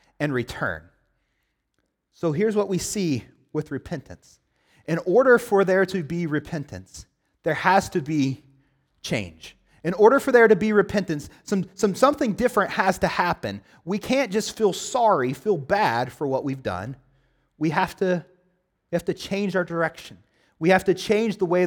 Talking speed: 170 wpm